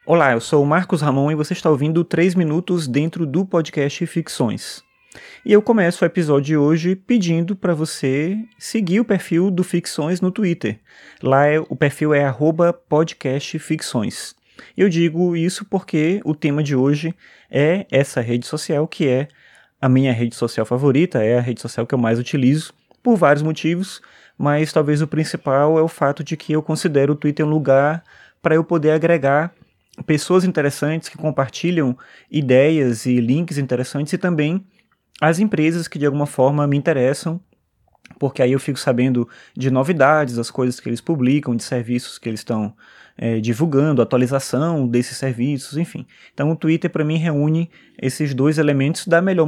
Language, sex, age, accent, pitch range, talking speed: Portuguese, male, 20-39, Brazilian, 135-170 Hz, 170 wpm